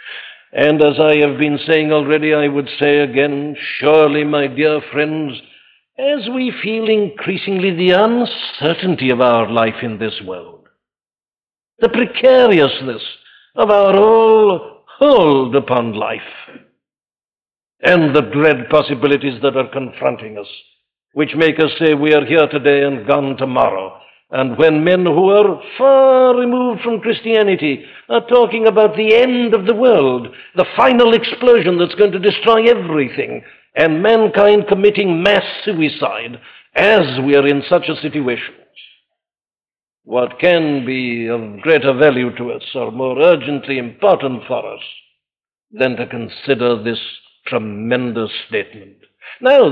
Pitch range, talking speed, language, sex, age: 140-215 Hz, 135 wpm, English, male, 60-79